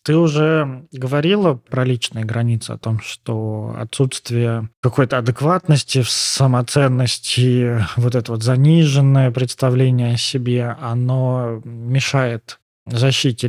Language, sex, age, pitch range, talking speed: Russian, male, 20-39, 115-140 Hz, 105 wpm